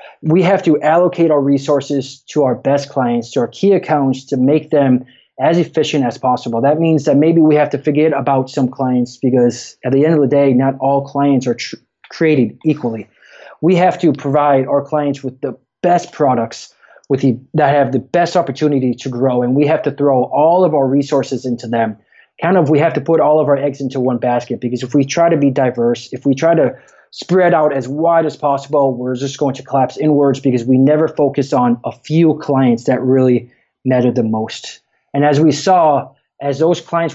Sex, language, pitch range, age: male, English, 130-155 Hz, 20-39